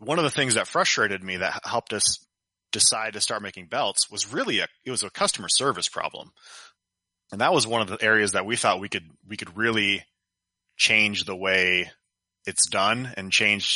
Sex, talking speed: male, 200 wpm